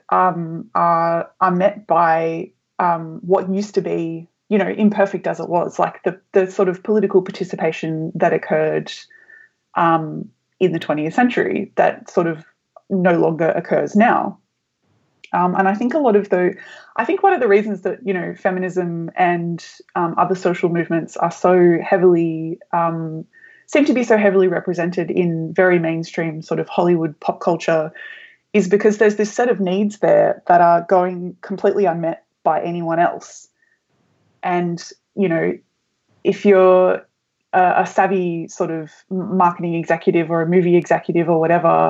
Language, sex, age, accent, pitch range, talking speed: English, female, 20-39, Australian, 170-200 Hz, 160 wpm